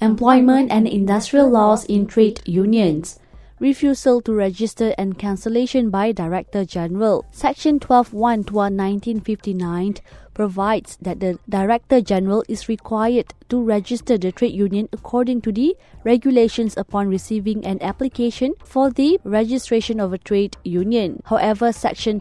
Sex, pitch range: female, 190-230 Hz